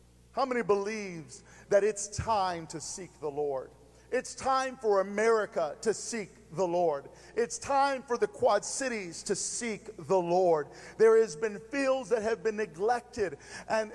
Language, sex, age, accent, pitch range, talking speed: English, male, 50-69, American, 125-210 Hz, 160 wpm